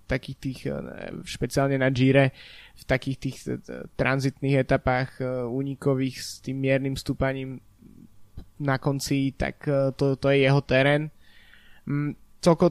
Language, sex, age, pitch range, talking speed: Slovak, male, 20-39, 135-150 Hz, 110 wpm